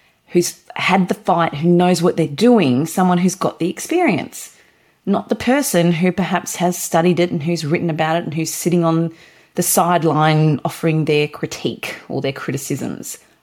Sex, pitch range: female, 155-180 Hz